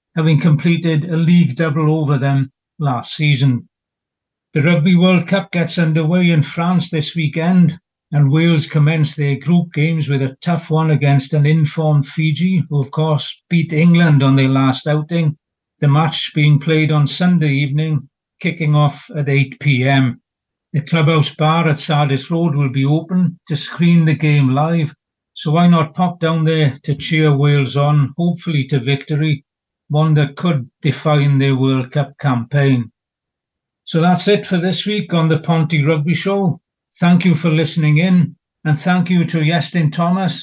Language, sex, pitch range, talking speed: English, male, 145-165 Hz, 165 wpm